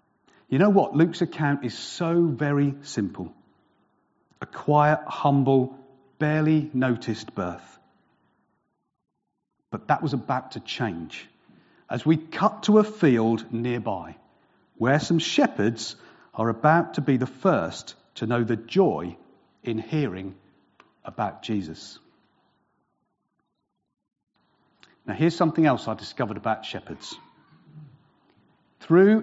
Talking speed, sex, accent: 110 wpm, male, British